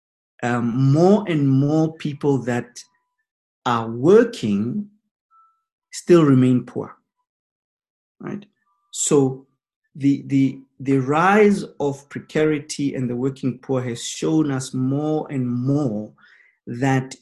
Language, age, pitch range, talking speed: English, 50-69, 125-160 Hz, 105 wpm